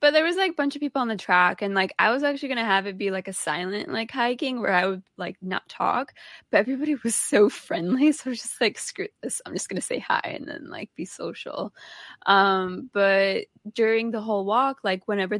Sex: female